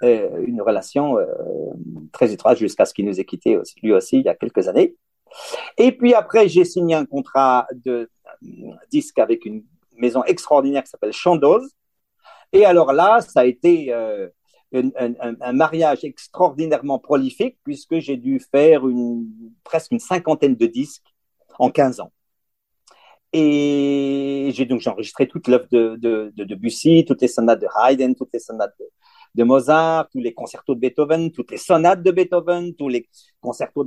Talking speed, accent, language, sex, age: 165 wpm, French, French, male, 50-69